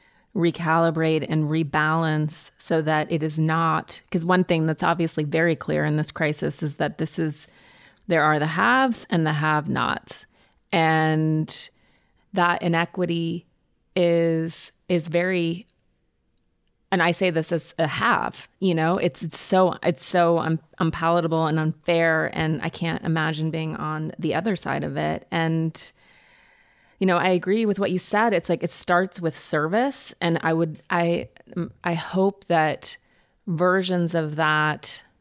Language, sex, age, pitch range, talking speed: English, female, 30-49, 160-180 Hz, 150 wpm